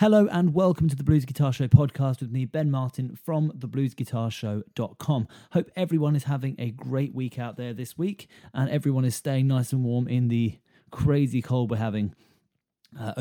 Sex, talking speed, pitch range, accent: male, 180 wpm, 115-140 Hz, British